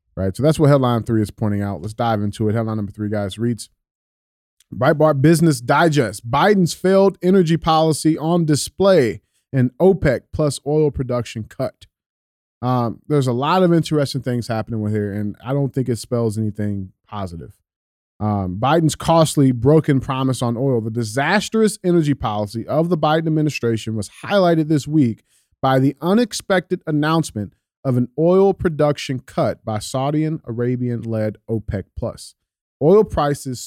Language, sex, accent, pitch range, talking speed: English, male, American, 110-155 Hz, 155 wpm